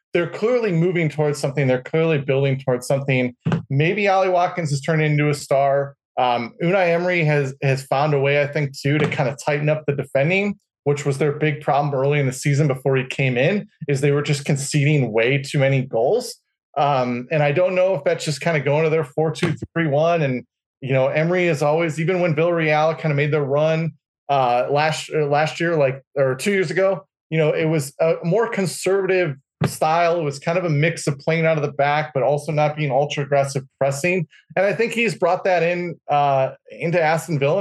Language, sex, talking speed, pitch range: English, male, 215 wpm, 140-175 Hz